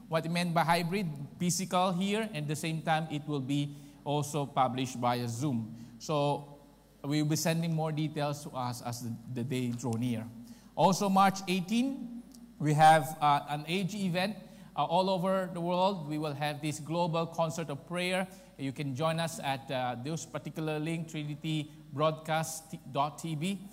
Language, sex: English, male